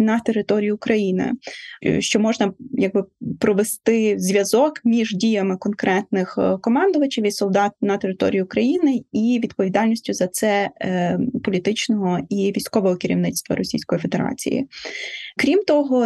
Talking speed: 110 wpm